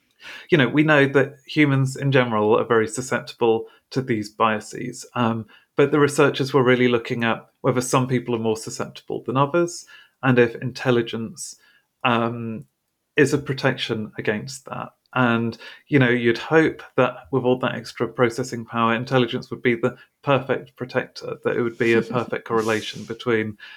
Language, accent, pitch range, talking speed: English, British, 115-130 Hz, 165 wpm